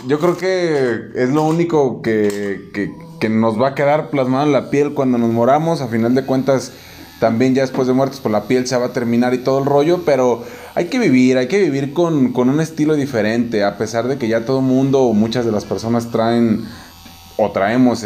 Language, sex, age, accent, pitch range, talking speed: Spanish, male, 20-39, Mexican, 115-145 Hz, 230 wpm